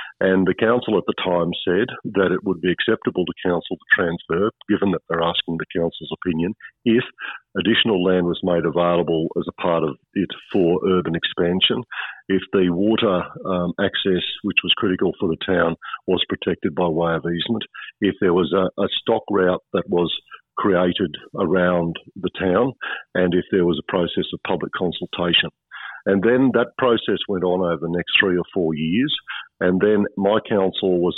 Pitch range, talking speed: 85-100 Hz, 180 wpm